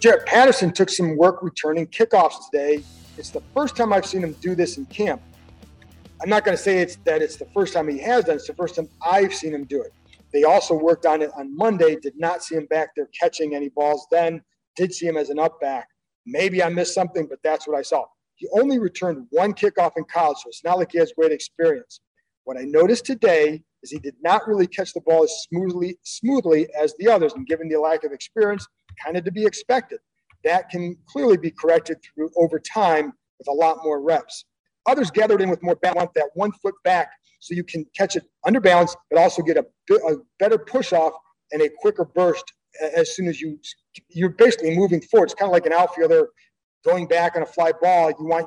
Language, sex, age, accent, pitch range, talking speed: English, male, 40-59, American, 160-200 Hz, 225 wpm